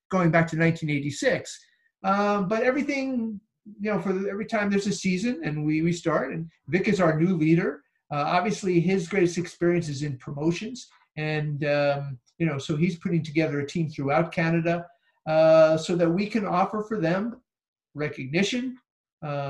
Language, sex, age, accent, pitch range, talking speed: English, male, 50-69, American, 155-190 Hz, 165 wpm